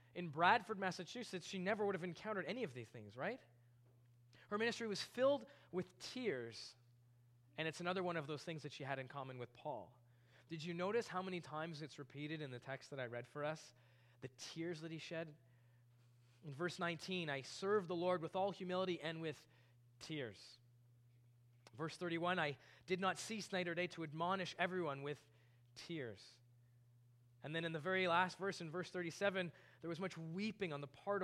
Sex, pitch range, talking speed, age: male, 120-185 Hz, 190 wpm, 20-39